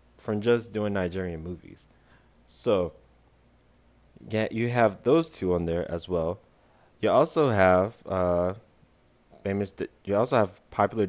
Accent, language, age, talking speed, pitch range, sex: American, English, 20-39, 135 wpm, 85-110 Hz, male